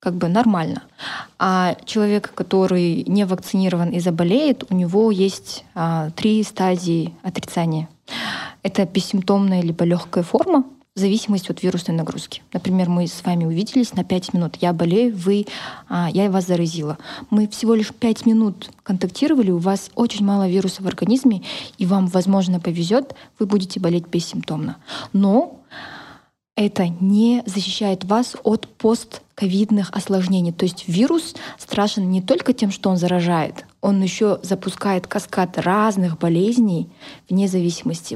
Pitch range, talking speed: 175-215 Hz, 140 wpm